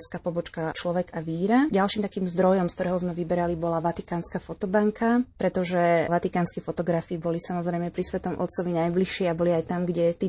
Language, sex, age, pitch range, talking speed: Slovak, female, 20-39, 170-185 Hz, 170 wpm